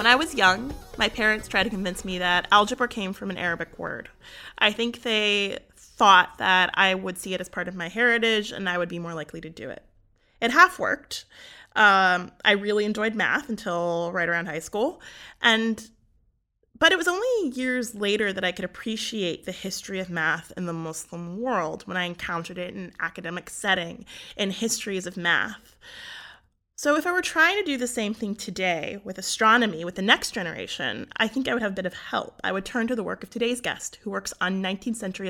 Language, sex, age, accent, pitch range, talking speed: English, female, 20-39, American, 180-230 Hz, 210 wpm